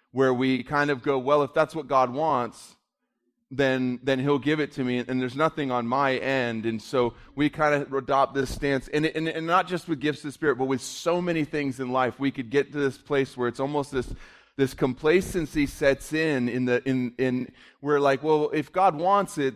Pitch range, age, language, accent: 130-155 Hz, 30-49, English, American